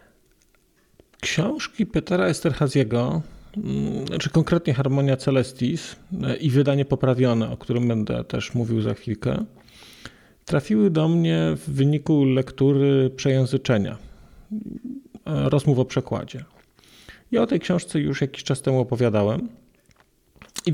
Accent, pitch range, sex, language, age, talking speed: native, 120-160 Hz, male, Polish, 40-59, 110 wpm